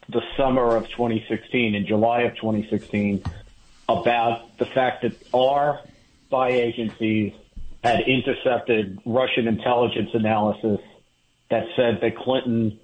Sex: male